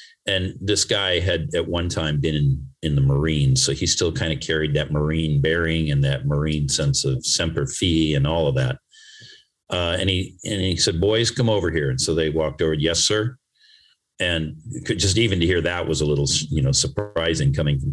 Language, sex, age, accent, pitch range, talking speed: English, male, 50-69, American, 80-110 Hz, 215 wpm